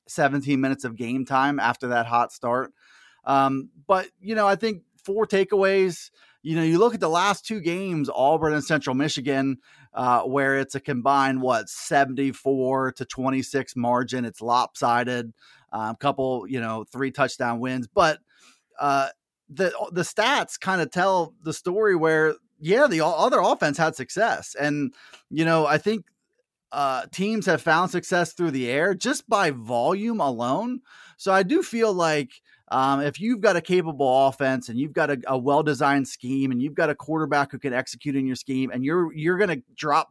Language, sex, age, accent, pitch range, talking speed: English, male, 30-49, American, 130-180 Hz, 180 wpm